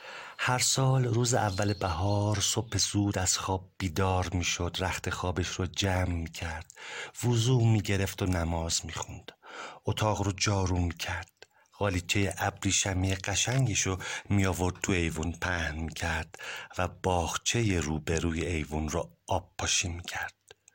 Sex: male